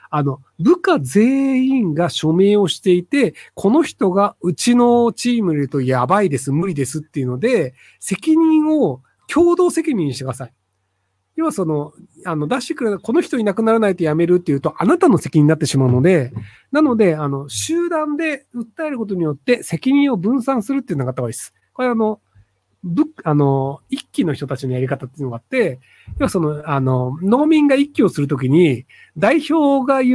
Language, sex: Japanese, male